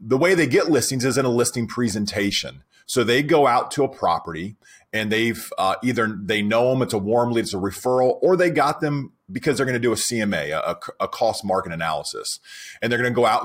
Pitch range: 105-135 Hz